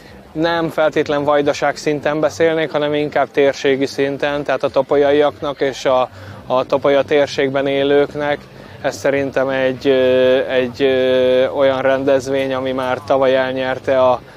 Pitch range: 130-150 Hz